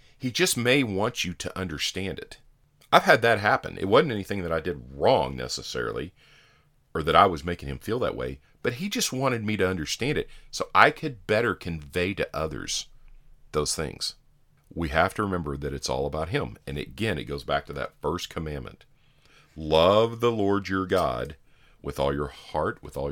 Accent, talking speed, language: American, 195 wpm, English